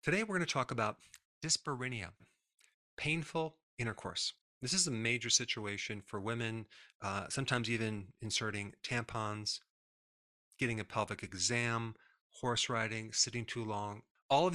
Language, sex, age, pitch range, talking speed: English, male, 30-49, 105-125 Hz, 130 wpm